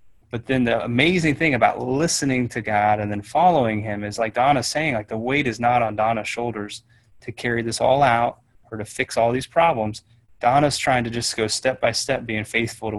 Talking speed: 215 wpm